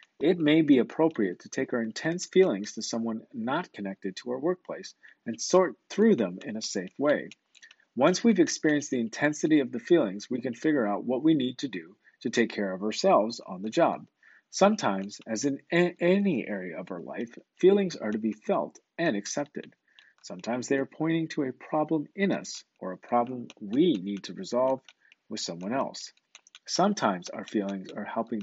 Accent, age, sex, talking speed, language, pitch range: American, 40-59, male, 185 wpm, English, 105-150 Hz